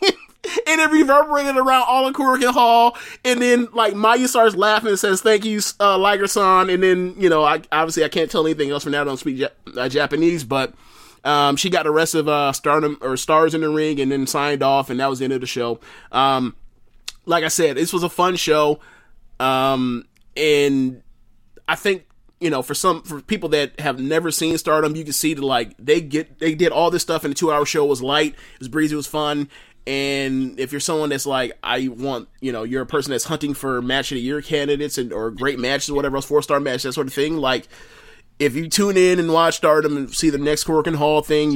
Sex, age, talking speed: male, 30-49, 235 wpm